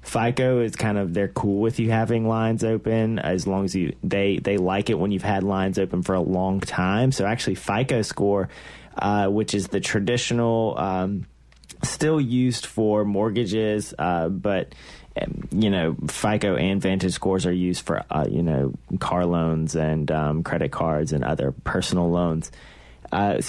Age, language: 30-49, English